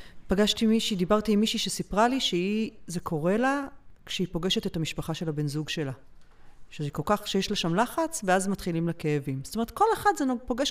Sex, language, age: female, Hebrew, 30-49